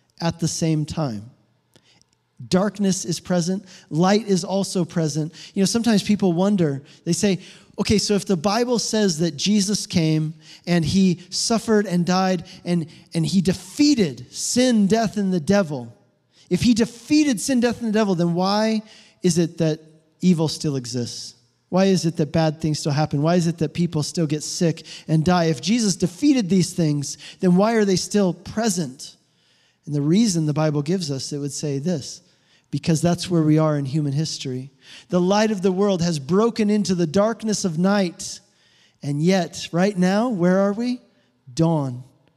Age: 40-59